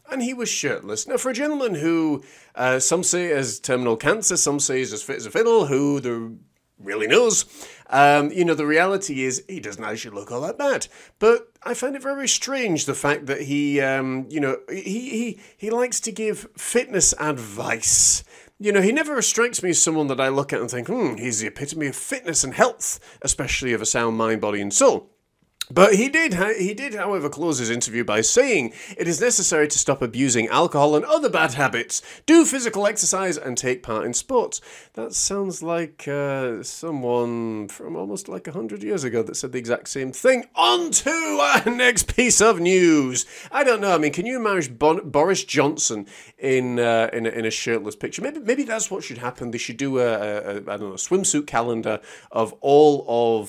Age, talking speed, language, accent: 30-49, 210 wpm, English, British